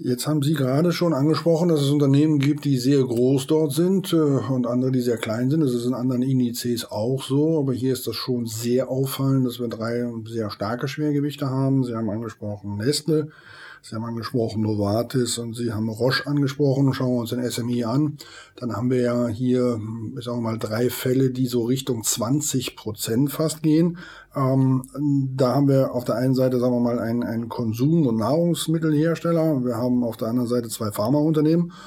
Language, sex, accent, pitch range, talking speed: German, male, German, 120-145 Hz, 190 wpm